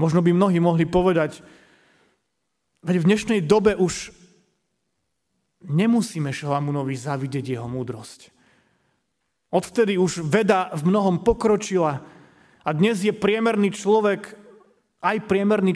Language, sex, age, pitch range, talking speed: Slovak, male, 30-49, 145-190 Hz, 105 wpm